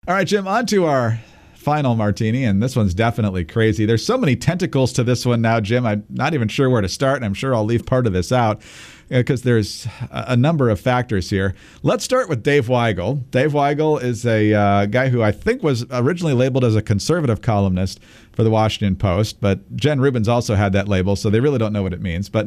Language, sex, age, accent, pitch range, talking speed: English, male, 50-69, American, 105-135 Hz, 230 wpm